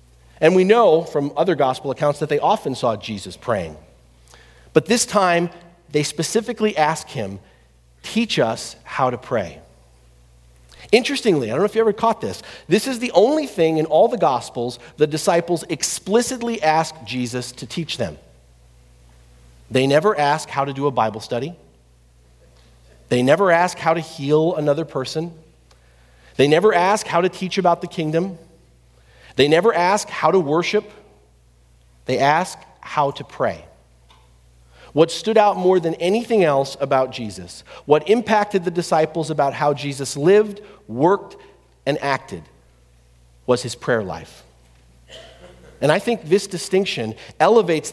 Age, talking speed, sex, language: 40-59, 150 wpm, male, English